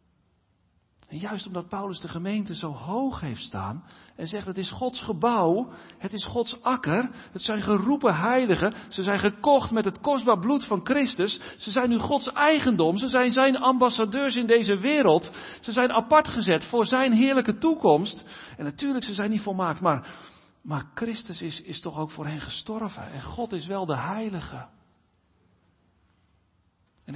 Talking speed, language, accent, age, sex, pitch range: 170 wpm, Dutch, Dutch, 50-69, male, 145-235 Hz